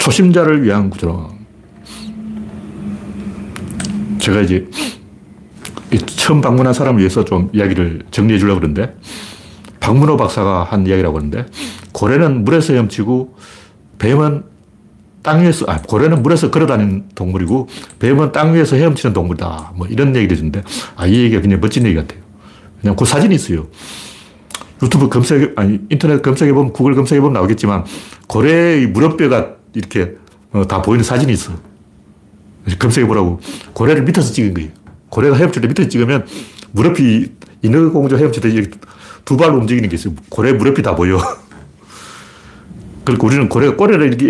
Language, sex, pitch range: Korean, male, 100-145 Hz